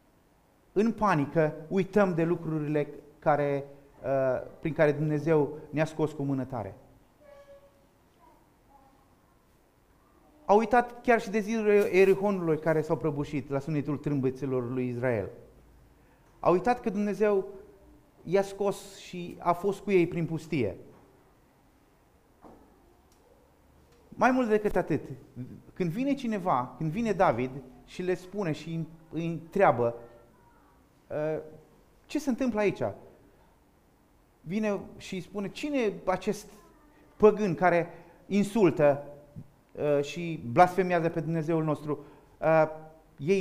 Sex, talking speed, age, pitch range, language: male, 105 wpm, 30-49, 145-195 Hz, Romanian